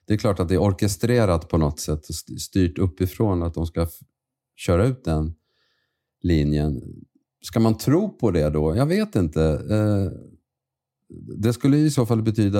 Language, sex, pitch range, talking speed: Swedish, male, 85-105 Hz, 165 wpm